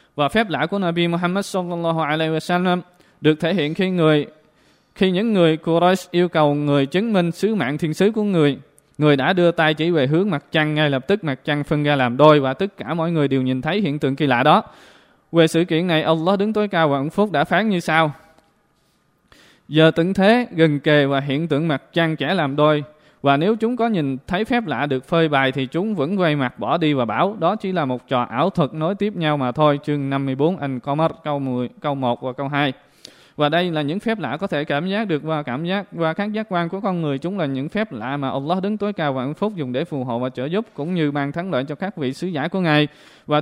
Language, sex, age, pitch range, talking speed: Vietnamese, male, 20-39, 145-180 Hz, 255 wpm